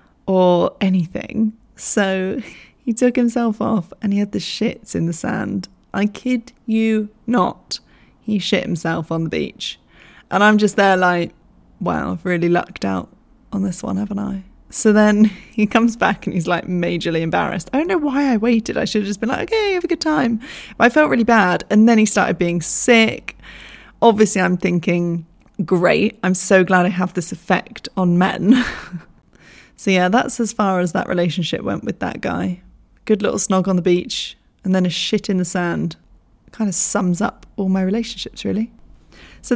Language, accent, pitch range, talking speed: English, British, 180-230 Hz, 190 wpm